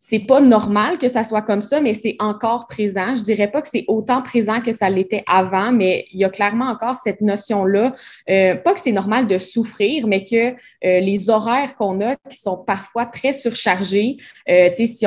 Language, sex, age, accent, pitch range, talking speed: French, female, 20-39, Canadian, 190-230 Hz, 205 wpm